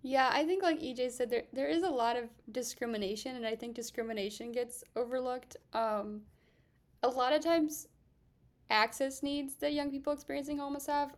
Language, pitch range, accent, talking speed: English, 220-265 Hz, American, 170 wpm